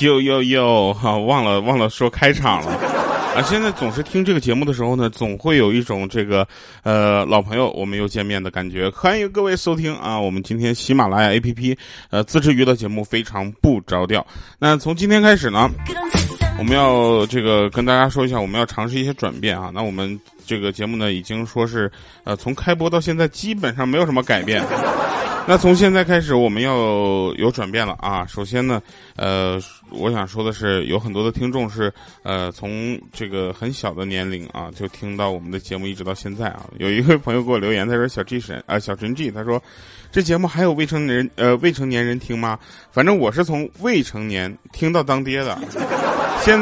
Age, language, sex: 20-39, Chinese, male